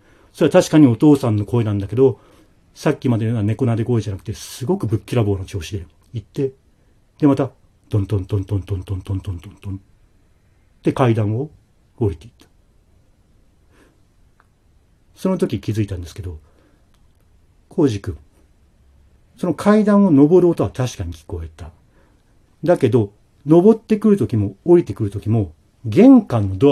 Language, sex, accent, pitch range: Japanese, male, native, 100-140 Hz